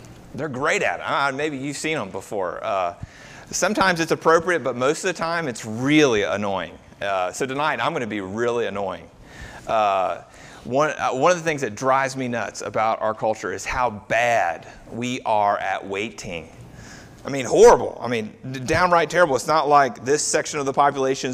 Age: 30-49